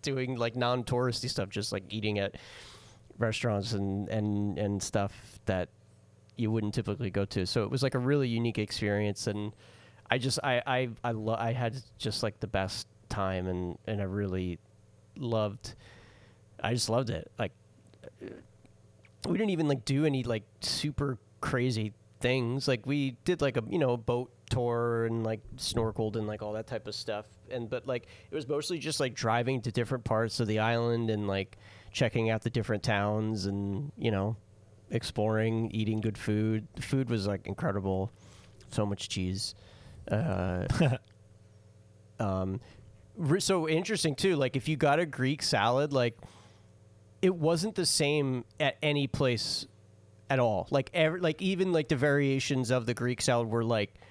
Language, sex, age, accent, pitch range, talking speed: English, male, 30-49, American, 105-130 Hz, 170 wpm